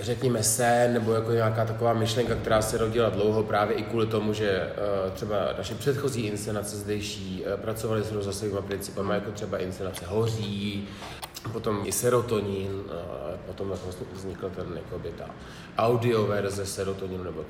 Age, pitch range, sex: 30-49, 95-110 Hz, male